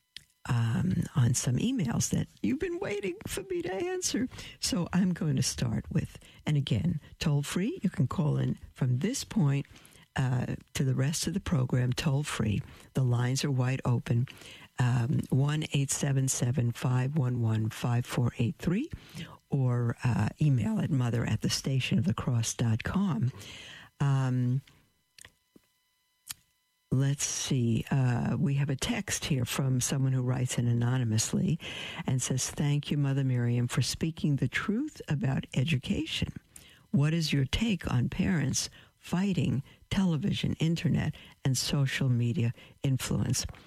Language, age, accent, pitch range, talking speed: English, 60-79, American, 125-160 Hz, 135 wpm